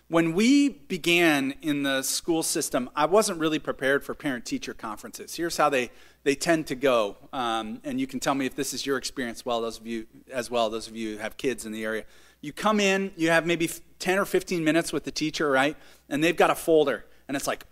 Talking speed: 235 wpm